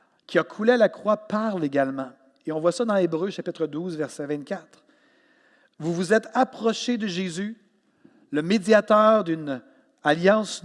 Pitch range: 150-210 Hz